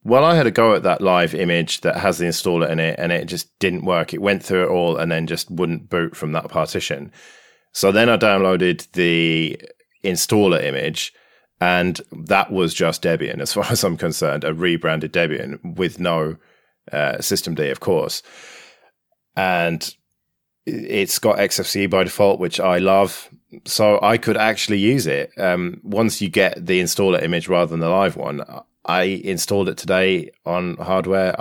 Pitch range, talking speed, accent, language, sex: 85-95 Hz, 175 wpm, British, English, male